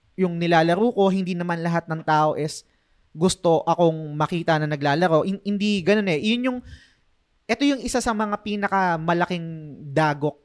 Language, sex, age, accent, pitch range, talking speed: Filipino, male, 20-39, native, 145-185 Hz, 160 wpm